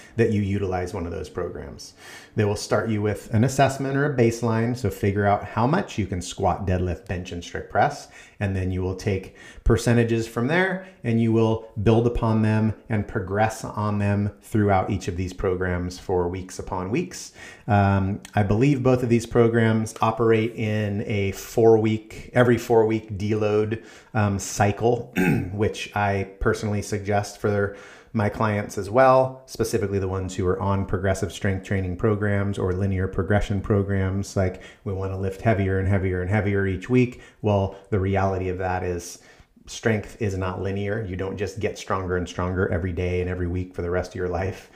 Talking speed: 185 wpm